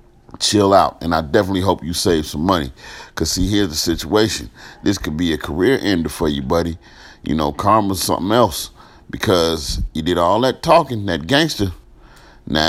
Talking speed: 185 wpm